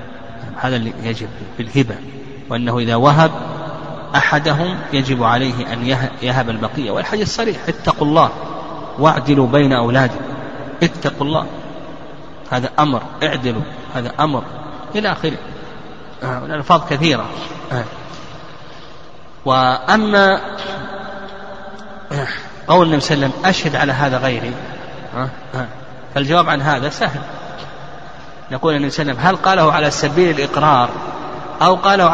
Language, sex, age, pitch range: Arabic, male, 30-49, 135-165 Hz